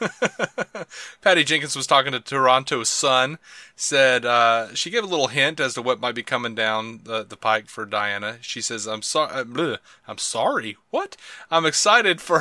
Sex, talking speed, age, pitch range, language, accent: male, 180 wpm, 30-49, 110-145 Hz, English, American